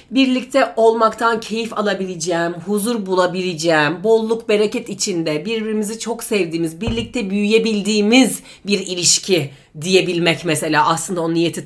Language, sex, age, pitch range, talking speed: Turkish, female, 40-59, 185-275 Hz, 110 wpm